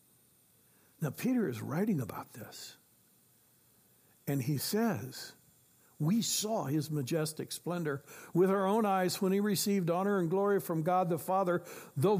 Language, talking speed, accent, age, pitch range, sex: English, 145 wpm, American, 60-79, 140-200 Hz, male